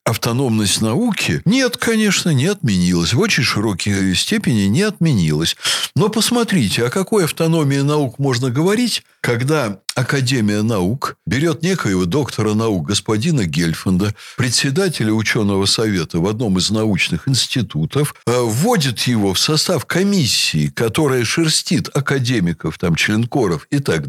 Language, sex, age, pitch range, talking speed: Russian, male, 60-79, 110-165 Hz, 120 wpm